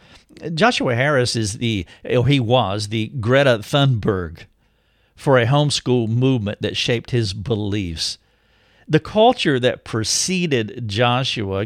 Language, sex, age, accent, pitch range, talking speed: English, male, 50-69, American, 110-145 Hz, 120 wpm